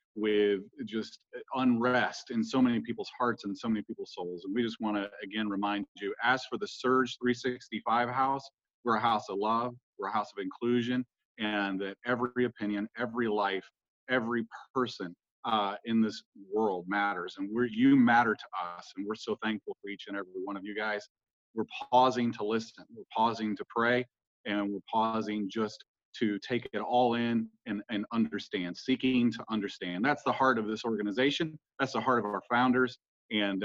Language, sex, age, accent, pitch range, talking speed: English, male, 40-59, American, 100-125 Hz, 185 wpm